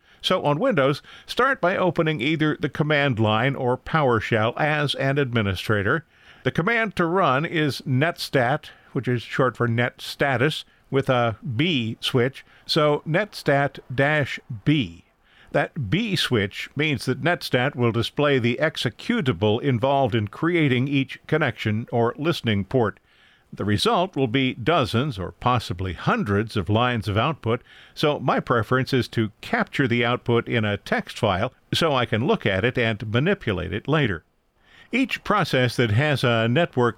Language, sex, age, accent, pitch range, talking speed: English, male, 50-69, American, 110-145 Hz, 145 wpm